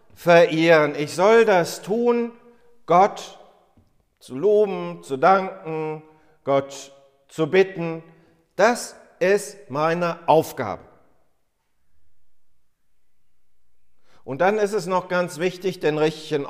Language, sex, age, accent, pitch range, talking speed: German, male, 50-69, German, 125-180 Hz, 95 wpm